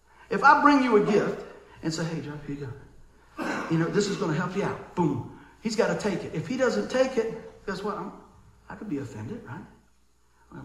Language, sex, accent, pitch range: English, male, American, 160-235 Hz